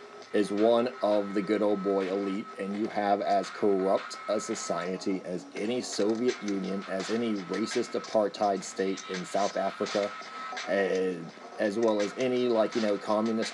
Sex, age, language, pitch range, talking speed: male, 40-59, English, 105-125 Hz, 160 wpm